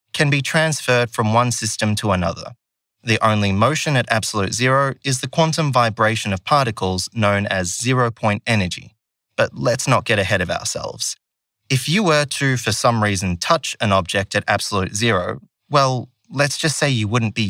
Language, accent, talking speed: English, Australian, 180 wpm